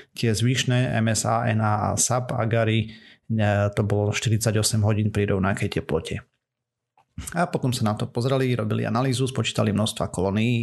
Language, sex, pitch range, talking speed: Slovak, male, 105-120 Hz, 140 wpm